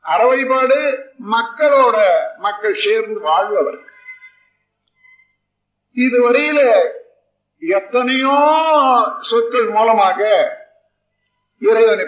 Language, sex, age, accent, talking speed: Tamil, male, 50-69, native, 50 wpm